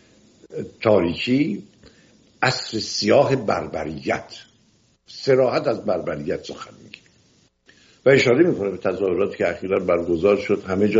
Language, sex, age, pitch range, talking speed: English, male, 60-79, 105-155 Hz, 110 wpm